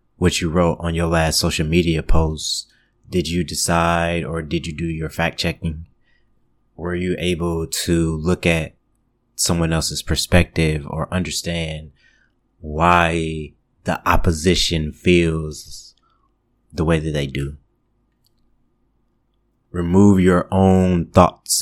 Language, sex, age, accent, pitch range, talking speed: English, male, 30-49, American, 80-90 Hz, 120 wpm